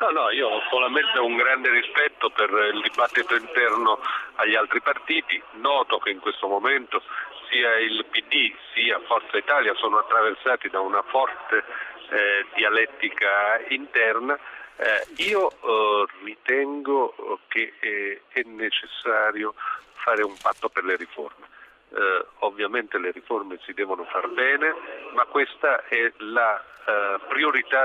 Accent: native